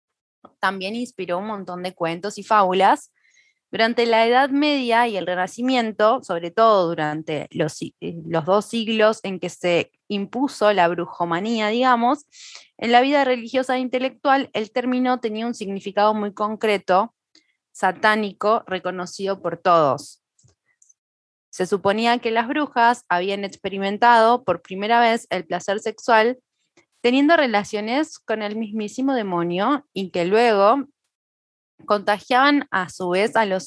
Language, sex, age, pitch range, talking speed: Spanish, female, 20-39, 190-240 Hz, 130 wpm